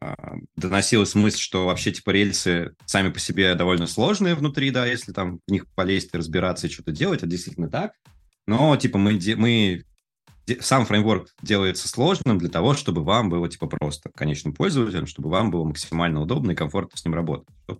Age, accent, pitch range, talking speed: 20-39, native, 80-105 Hz, 185 wpm